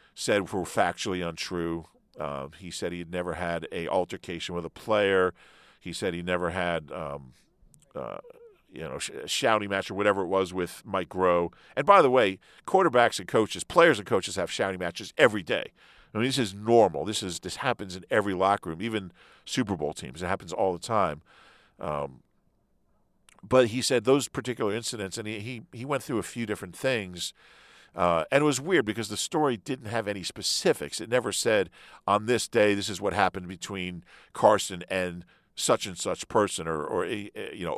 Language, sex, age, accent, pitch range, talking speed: English, male, 50-69, American, 90-120 Hz, 195 wpm